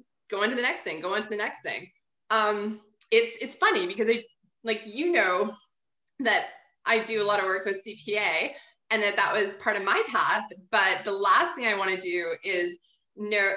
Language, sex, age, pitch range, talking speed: English, female, 20-39, 195-285 Hz, 210 wpm